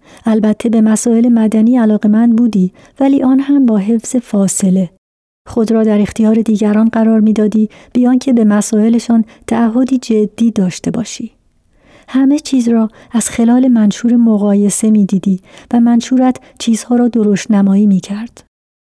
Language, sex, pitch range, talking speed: Persian, female, 210-235 Hz, 145 wpm